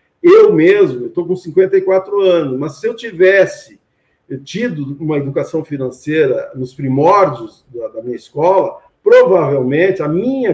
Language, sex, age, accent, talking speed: Portuguese, male, 50-69, Brazilian, 130 wpm